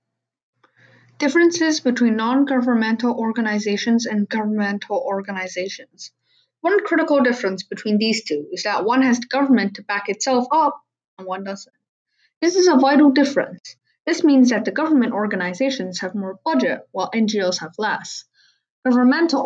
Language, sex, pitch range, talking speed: English, female, 205-275 Hz, 140 wpm